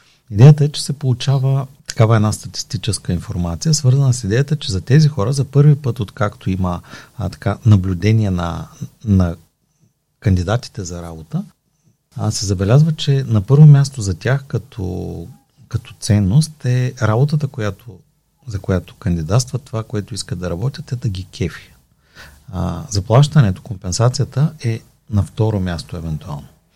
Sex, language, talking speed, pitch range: male, Bulgarian, 145 wpm, 100-140 Hz